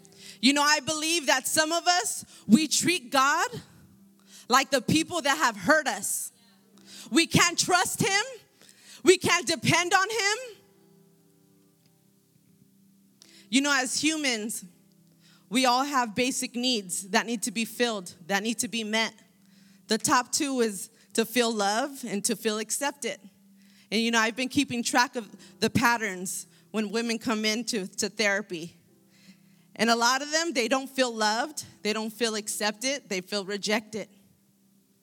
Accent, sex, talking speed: American, female, 150 wpm